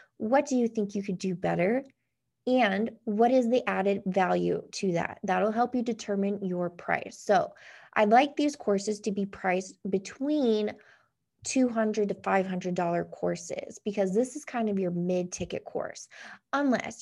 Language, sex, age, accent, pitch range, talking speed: English, female, 20-39, American, 185-230 Hz, 155 wpm